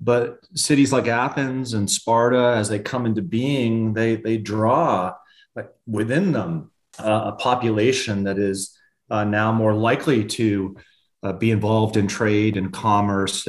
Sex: male